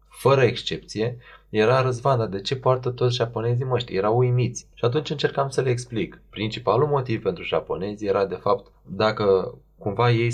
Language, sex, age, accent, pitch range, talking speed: Romanian, male, 20-39, native, 95-120 Hz, 165 wpm